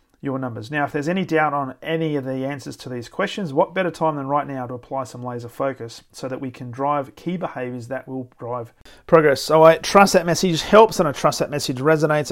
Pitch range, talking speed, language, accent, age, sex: 125-155 Hz, 240 wpm, English, Australian, 40-59, male